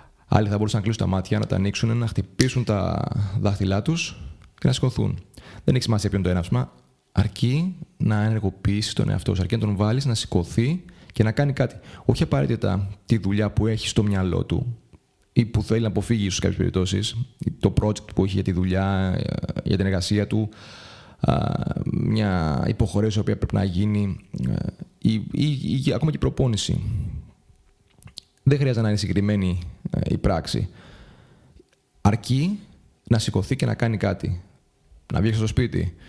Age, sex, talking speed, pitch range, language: 30-49, male, 165 wpm, 100-120 Hz, Greek